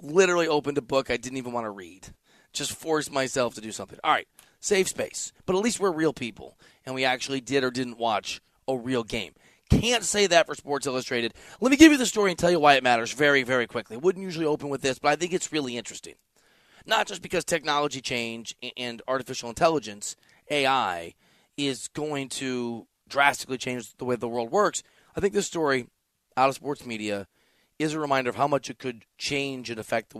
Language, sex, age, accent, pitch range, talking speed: English, male, 30-49, American, 120-150 Hz, 215 wpm